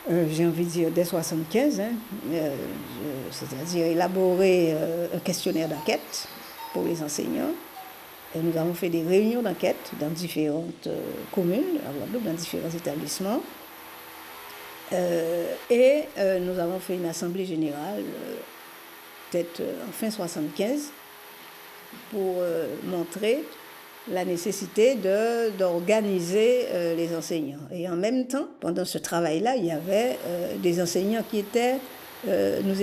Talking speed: 130 wpm